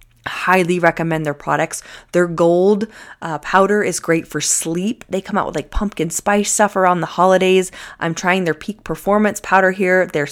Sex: female